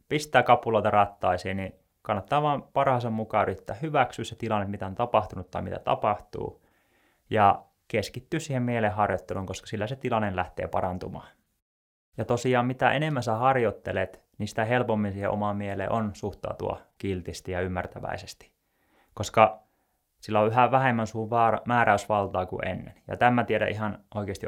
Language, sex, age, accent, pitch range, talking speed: Finnish, male, 20-39, native, 95-115 Hz, 145 wpm